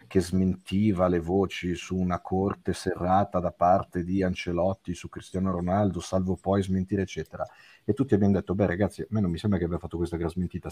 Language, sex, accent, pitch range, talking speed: Italian, male, native, 85-100 Hz, 200 wpm